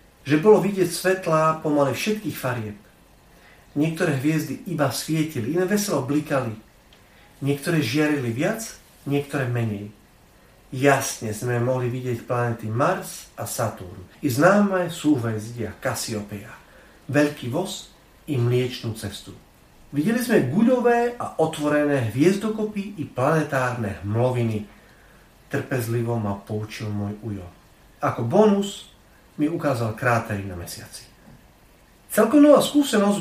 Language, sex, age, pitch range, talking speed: Slovak, male, 40-59, 115-170 Hz, 110 wpm